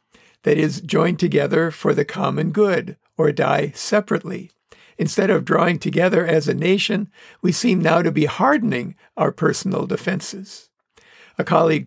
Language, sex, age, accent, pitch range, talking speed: English, male, 50-69, American, 155-195 Hz, 145 wpm